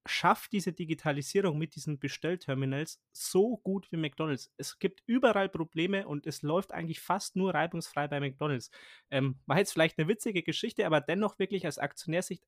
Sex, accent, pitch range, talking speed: male, German, 140-180 Hz, 170 wpm